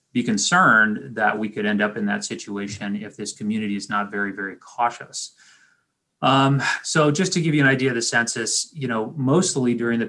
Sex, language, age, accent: male, English, 30-49, American